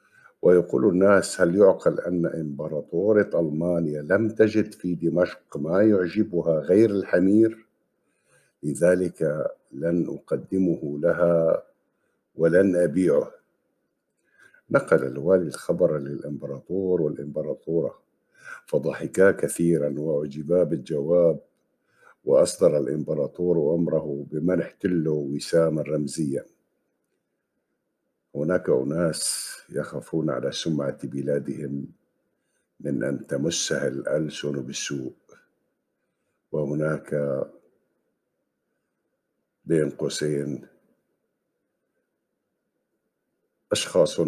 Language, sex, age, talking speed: Arabic, male, 50-69, 70 wpm